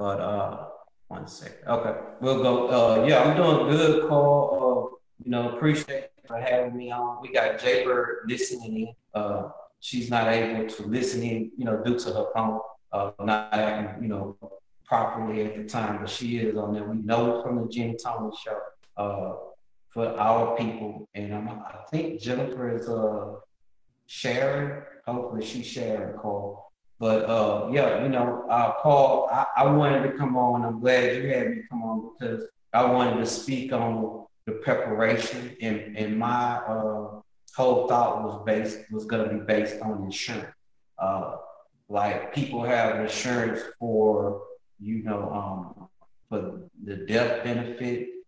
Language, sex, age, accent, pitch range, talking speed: English, male, 30-49, American, 110-125 Hz, 165 wpm